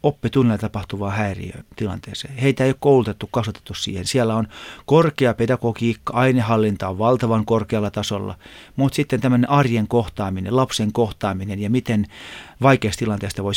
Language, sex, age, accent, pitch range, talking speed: Finnish, male, 30-49, native, 100-125 Hz, 135 wpm